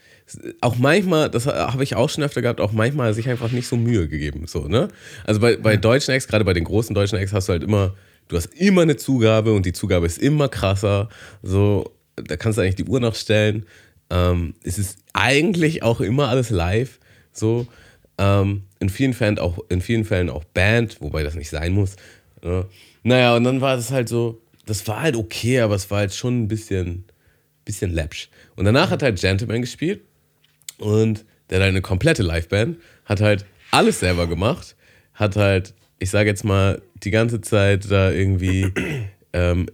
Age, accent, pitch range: 30-49, German, 95-120 Hz